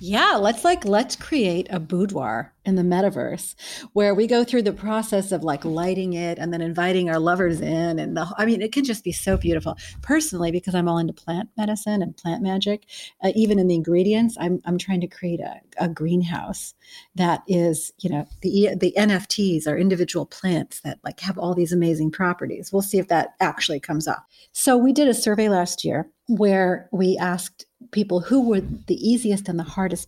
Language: English